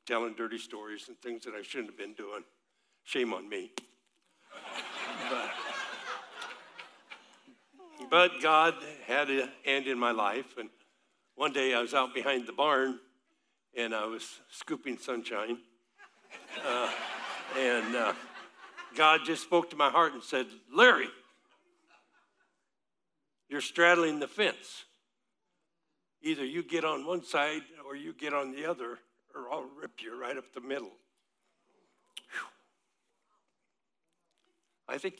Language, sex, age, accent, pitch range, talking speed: English, male, 60-79, American, 125-170 Hz, 130 wpm